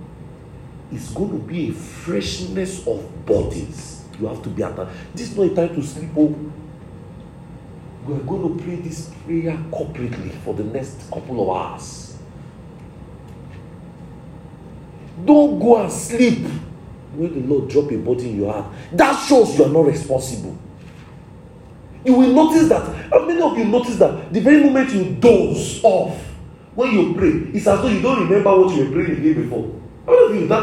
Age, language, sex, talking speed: 40-59, English, male, 175 wpm